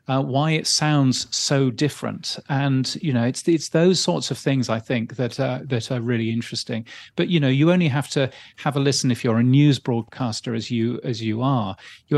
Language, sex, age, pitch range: English, male, 40-59, 120-135 Hz